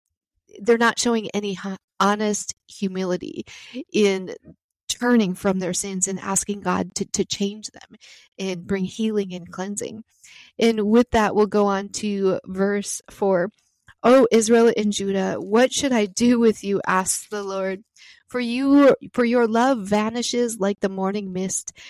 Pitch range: 195-230 Hz